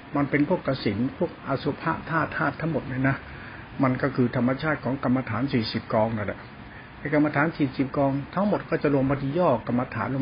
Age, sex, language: 60-79, male, Thai